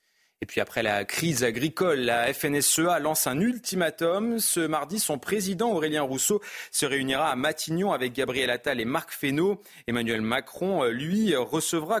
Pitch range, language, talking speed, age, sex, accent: 135-180 Hz, French, 155 wpm, 30-49, male, French